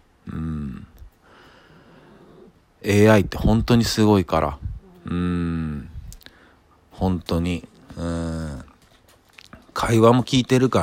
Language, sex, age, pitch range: Japanese, male, 40-59, 85-110 Hz